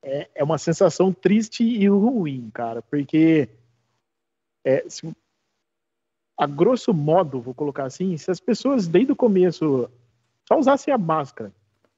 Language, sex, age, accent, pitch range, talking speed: Portuguese, male, 40-59, Brazilian, 140-200 Hz, 130 wpm